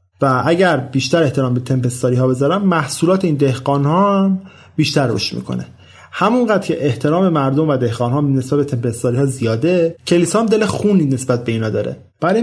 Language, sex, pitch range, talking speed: Persian, male, 125-165 Hz, 170 wpm